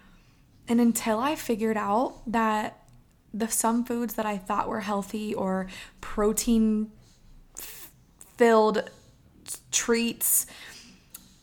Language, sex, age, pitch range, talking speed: English, female, 20-39, 210-235 Hz, 105 wpm